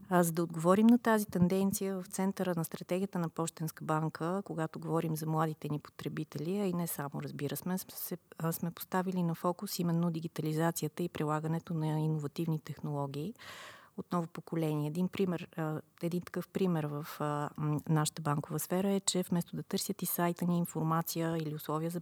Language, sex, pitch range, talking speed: Bulgarian, female, 155-185 Hz, 160 wpm